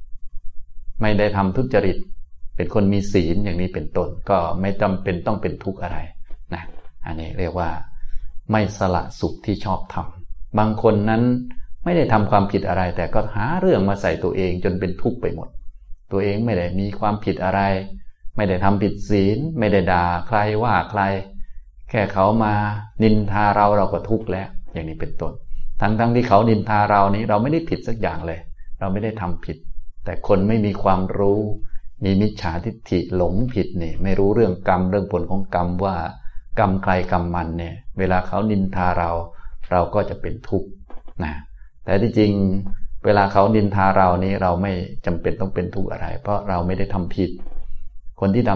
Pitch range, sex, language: 85-105 Hz, male, Thai